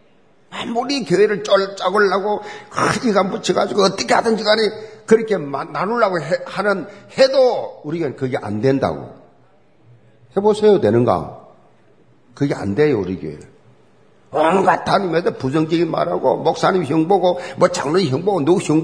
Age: 50-69